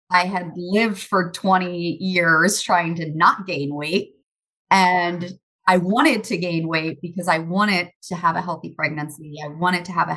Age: 30-49